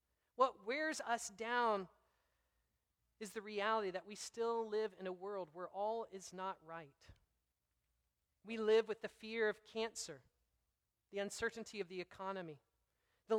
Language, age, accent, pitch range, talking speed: English, 40-59, American, 155-210 Hz, 145 wpm